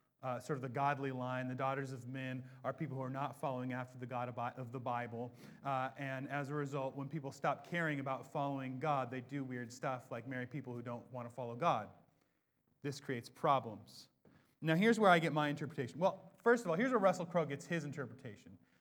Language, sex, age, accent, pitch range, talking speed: English, male, 30-49, American, 125-160 Hz, 220 wpm